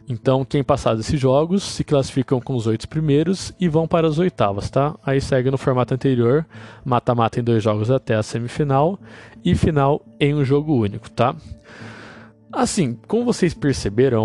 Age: 20-39